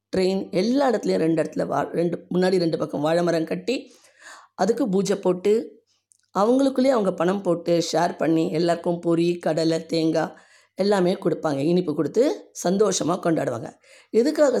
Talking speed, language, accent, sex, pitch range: 135 wpm, Tamil, native, female, 175-255 Hz